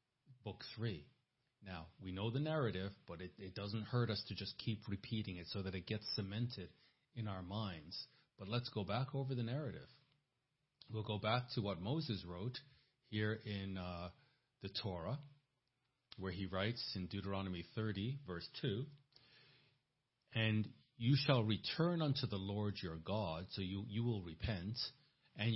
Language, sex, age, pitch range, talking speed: English, male, 40-59, 100-135 Hz, 160 wpm